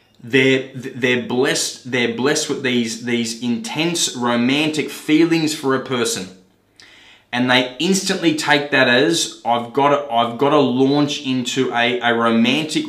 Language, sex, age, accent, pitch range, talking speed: English, male, 20-39, Australian, 120-145 Hz, 145 wpm